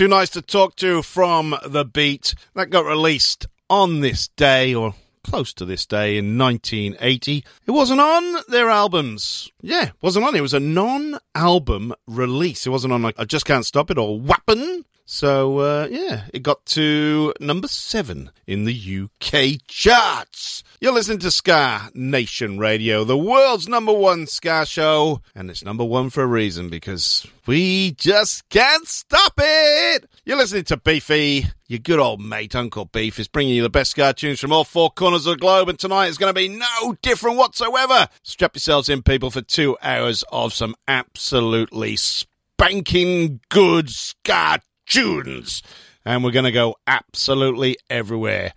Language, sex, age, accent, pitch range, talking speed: English, male, 40-59, British, 120-185 Hz, 165 wpm